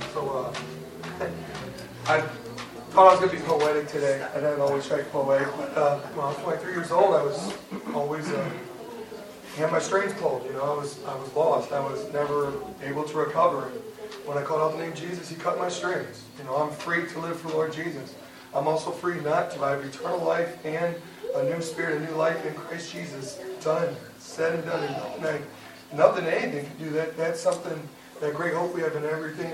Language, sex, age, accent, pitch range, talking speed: English, male, 30-49, American, 145-170 Hz, 220 wpm